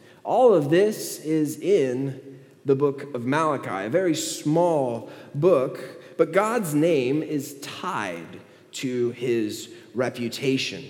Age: 20-39